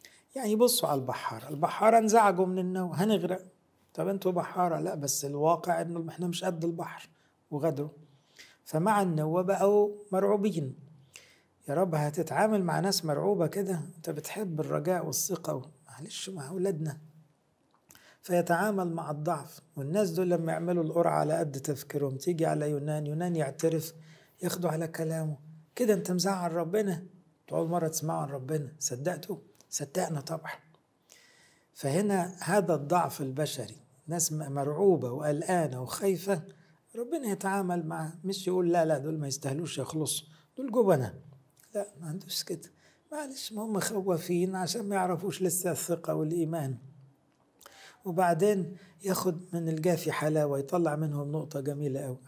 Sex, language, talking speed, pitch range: male, English, 135 wpm, 150-185 Hz